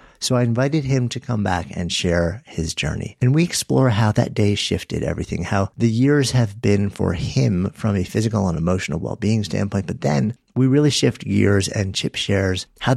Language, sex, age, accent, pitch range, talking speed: English, male, 50-69, American, 90-120 Hz, 200 wpm